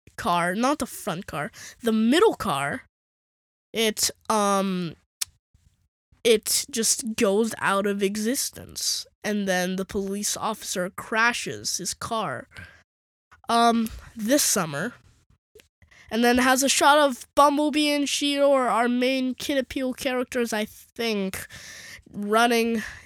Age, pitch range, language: 10-29, 195-270 Hz, English